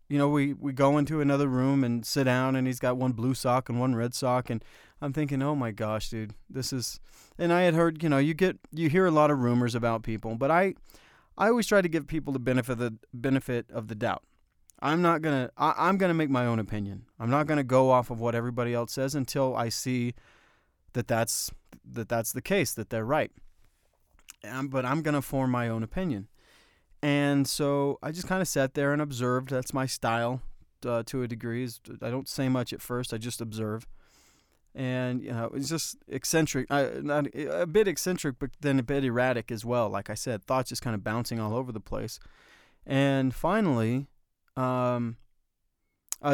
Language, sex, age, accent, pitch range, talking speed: English, male, 30-49, American, 120-140 Hz, 210 wpm